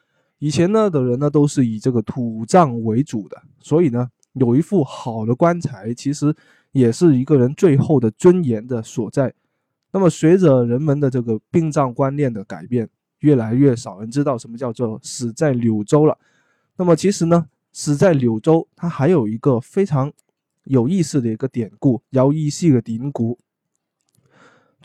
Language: Chinese